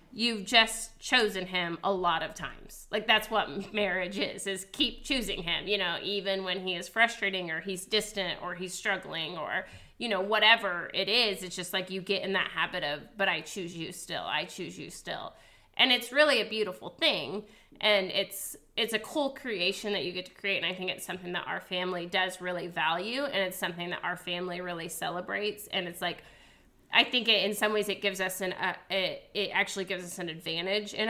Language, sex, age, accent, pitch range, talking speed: English, female, 30-49, American, 175-210 Hz, 215 wpm